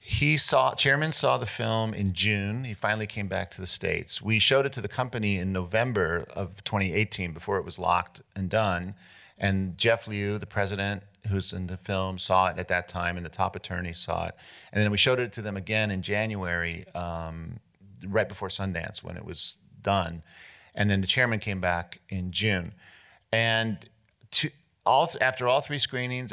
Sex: male